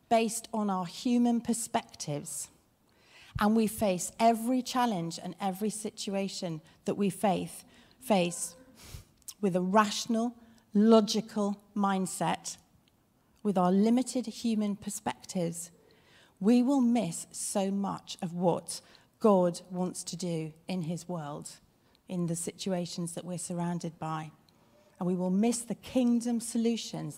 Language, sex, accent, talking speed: English, female, British, 120 wpm